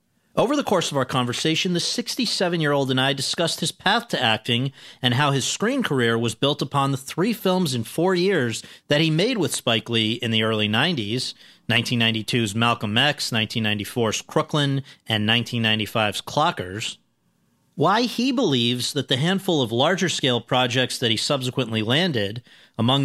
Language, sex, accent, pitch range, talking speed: English, male, American, 120-165 Hz, 160 wpm